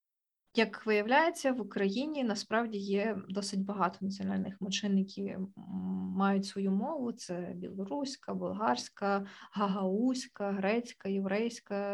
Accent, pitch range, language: native, 195-210 Hz, Ukrainian